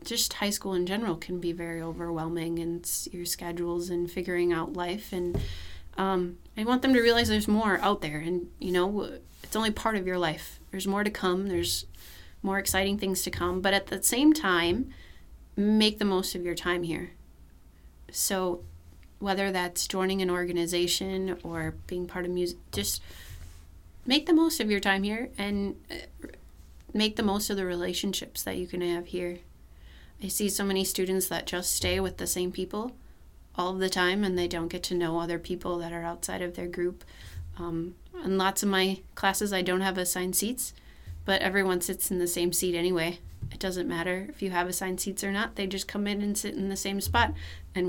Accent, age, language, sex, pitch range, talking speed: American, 30-49, English, female, 170-200 Hz, 200 wpm